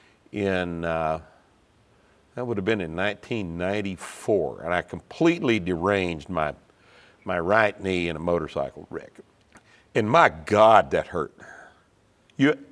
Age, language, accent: 60-79, English, American